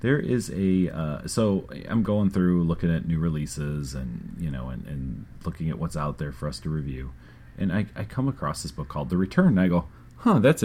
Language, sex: English, male